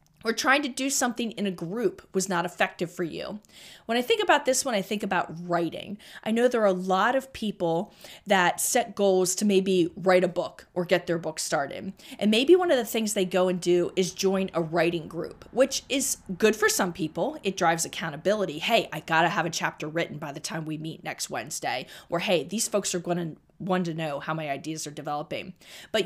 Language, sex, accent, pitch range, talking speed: English, female, American, 170-215 Hz, 230 wpm